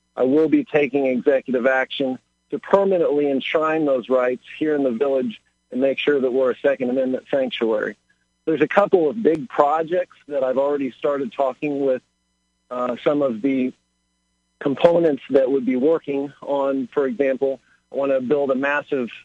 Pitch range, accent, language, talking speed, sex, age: 130-155 Hz, American, English, 170 wpm, male, 40-59